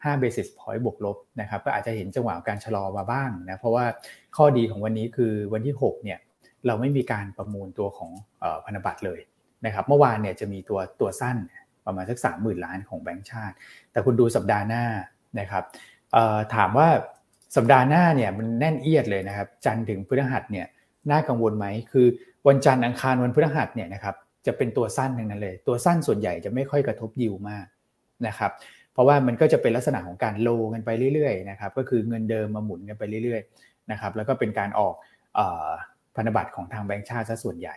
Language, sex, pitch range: Thai, male, 105-130 Hz